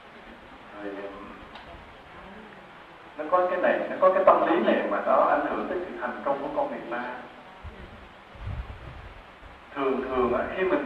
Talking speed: 150 wpm